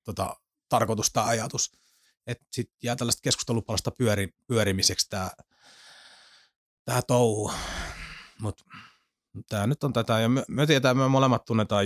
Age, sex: 30-49, male